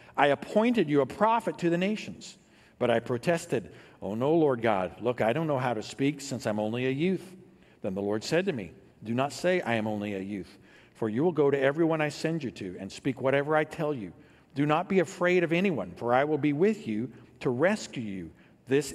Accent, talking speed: American, 230 wpm